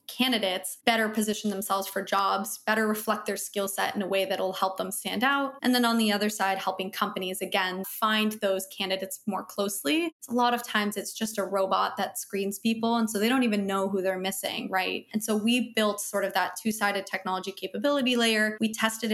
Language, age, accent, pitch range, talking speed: English, 20-39, American, 195-230 Hz, 210 wpm